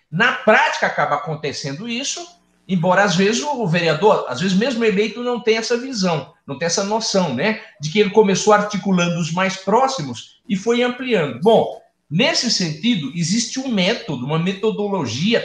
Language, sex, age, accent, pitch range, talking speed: Portuguese, male, 50-69, Brazilian, 150-225 Hz, 165 wpm